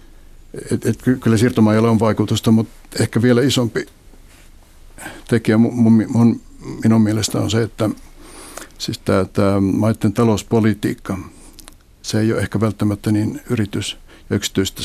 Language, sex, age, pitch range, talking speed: Finnish, male, 60-79, 100-110 Hz, 125 wpm